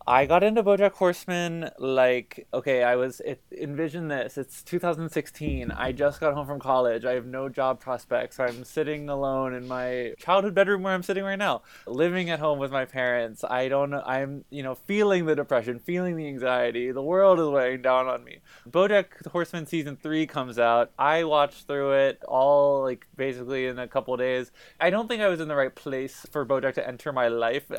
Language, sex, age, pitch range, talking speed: English, male, 20-39, 125-150 Hz, 200 wpm